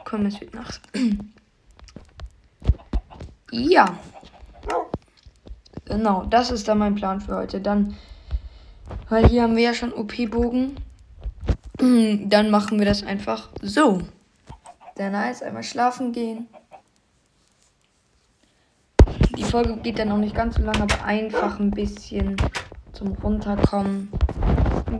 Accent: German